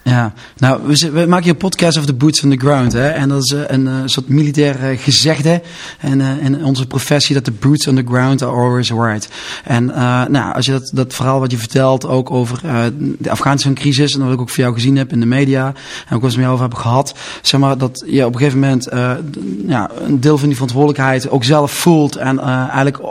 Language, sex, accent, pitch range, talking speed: Dutch, male, Dutch, 130-150 Hz, 255 wpm